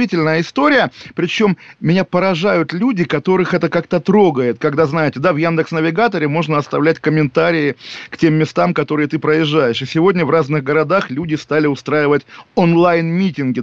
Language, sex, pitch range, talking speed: Russian, male, 150-180 Hz, 145 wpm